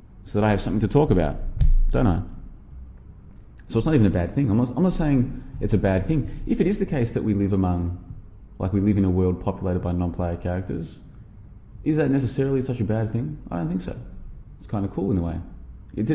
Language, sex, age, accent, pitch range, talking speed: English, male, 20-39, Australian, 90-110 Hz, 235 wpm